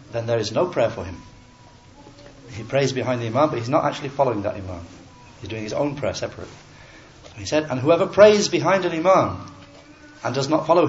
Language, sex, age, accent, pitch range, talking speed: English, male, 60-79, British, 115-155 Hz, 205 wpm